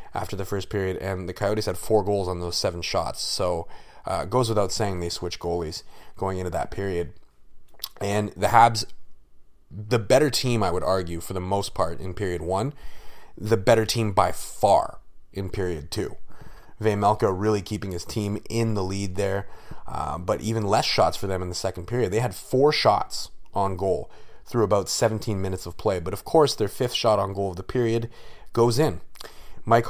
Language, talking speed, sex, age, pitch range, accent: English, 195 wpm, male, 30-49, 95-110 Hz, American